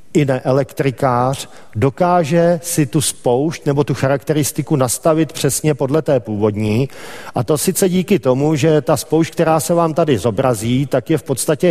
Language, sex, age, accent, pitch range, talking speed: Czech, male, 50-69, native, 135-165 Hz, 165 wpm